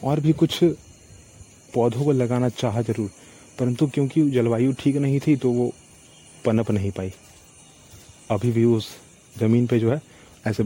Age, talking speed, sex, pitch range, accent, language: 30-49, 160 wpm, male, 105-130 Hz, native, Hindi